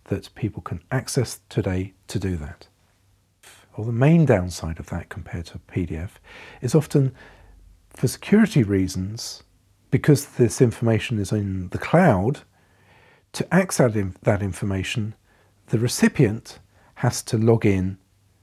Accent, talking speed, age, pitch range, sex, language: British, 125 wpm, 50-69, 95-125 Hz, male, English